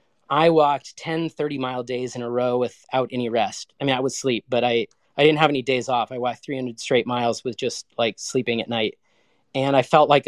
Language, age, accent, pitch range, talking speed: English, 30-49, American, 115-135 Hz, 240 wpm